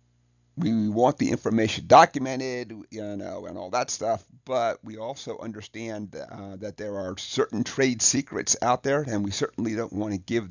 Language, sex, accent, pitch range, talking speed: English, male, American, 100-125 Hz, 175 wpm